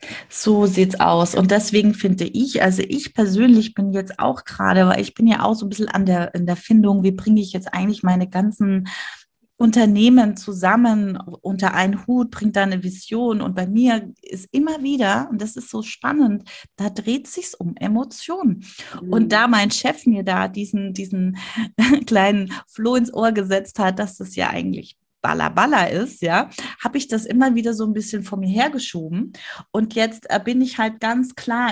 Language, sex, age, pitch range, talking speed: German, female, 30-49, 185-230 Hz, 185 wpm